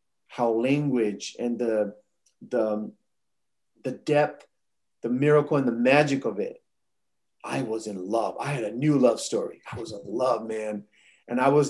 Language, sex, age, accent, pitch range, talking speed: English, male, 40-59, American, 115-145 Hz, 160 wpm